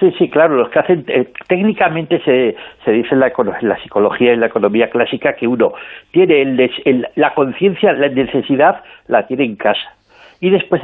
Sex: male